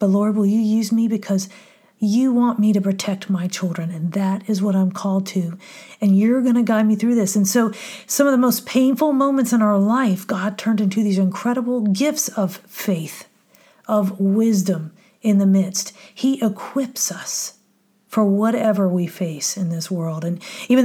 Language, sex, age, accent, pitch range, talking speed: English, female, 40-59, American, 190-215 Hz, 185 wpm